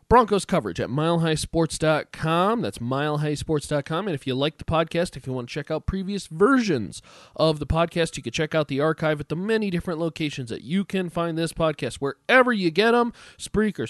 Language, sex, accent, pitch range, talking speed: English, male, American, 145-185 Hz, 195 wpm